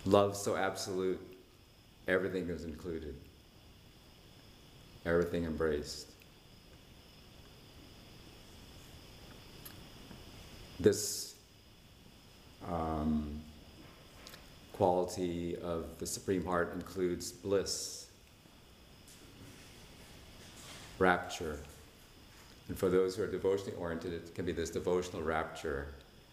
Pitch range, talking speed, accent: 80-95 Hz, 70 wpm, American